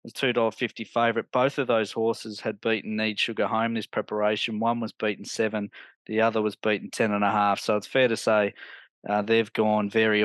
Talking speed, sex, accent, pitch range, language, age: 195 wpm, male, Australian, 115-130 Hz, English, 20-39